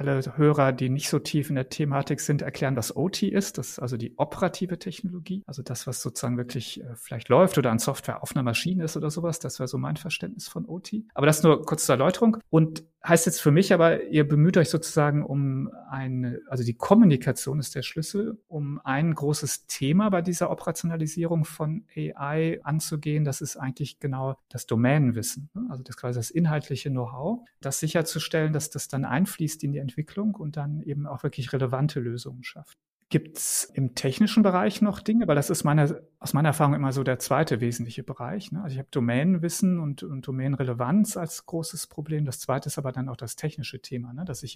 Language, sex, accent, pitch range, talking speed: German, male, German, 135-165 Hz, 205 wpm